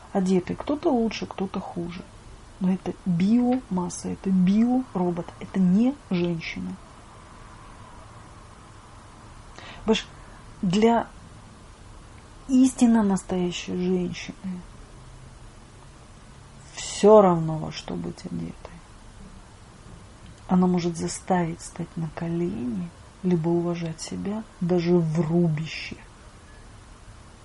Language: Russian